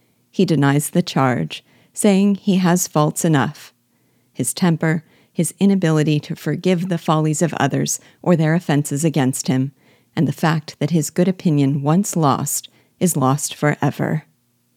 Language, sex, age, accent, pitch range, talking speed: English, female, 40-59, American, 145-175 Hz, 145 wpm